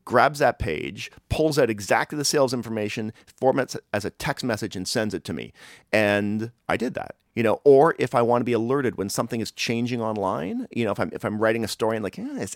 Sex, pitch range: male, 105-155 Hz